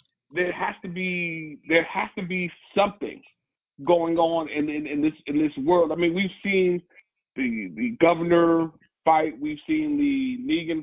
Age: 30-49